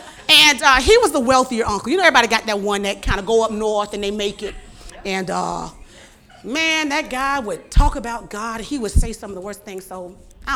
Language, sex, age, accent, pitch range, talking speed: English, female, 40-59, American, 215-325 Hz, 240 wpm